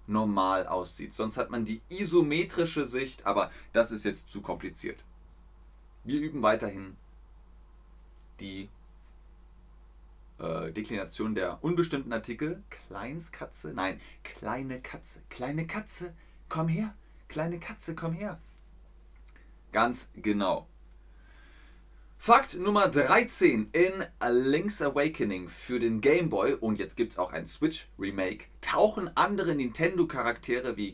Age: 30-49